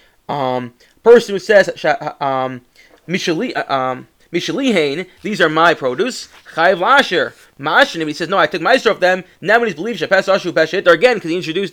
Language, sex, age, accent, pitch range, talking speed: English, male, 20-39, American, 150-225 Hz, 140 wpm